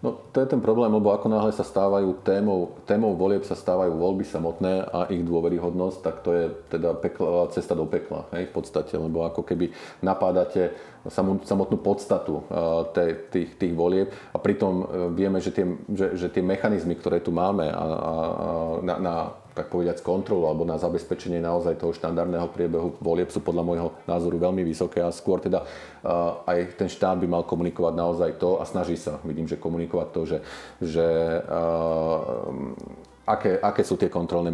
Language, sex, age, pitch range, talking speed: Slovak, male, 40-59, 85-90 Hz, 175 wpm